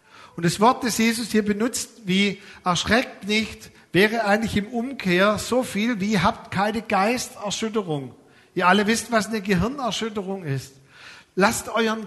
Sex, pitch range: male, 175-225 Hz